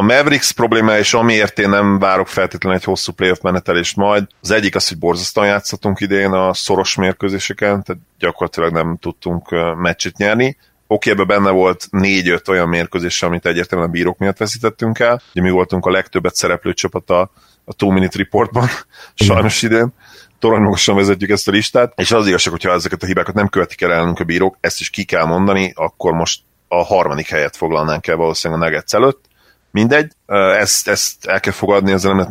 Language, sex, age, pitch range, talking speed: Hungarian, male, 30-49, 90-100 Hz, 185 wpm